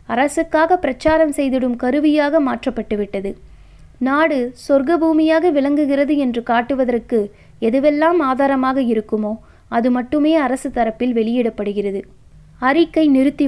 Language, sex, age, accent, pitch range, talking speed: Tamil, female, 20-39, native, 235-300 Hz, 90 wpm